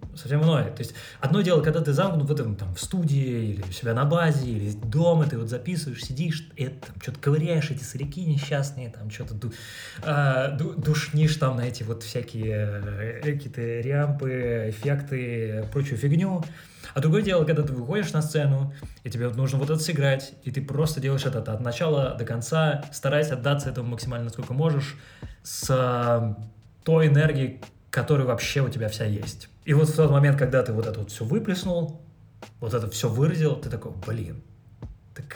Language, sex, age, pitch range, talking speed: Russian, male, 20-39, 115-155 Hz, 185 wpm